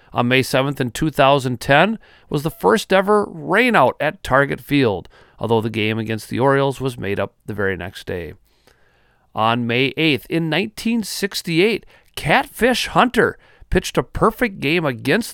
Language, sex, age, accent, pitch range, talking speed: English, male, 40-59, American, 115-150 Hz, 150 wpm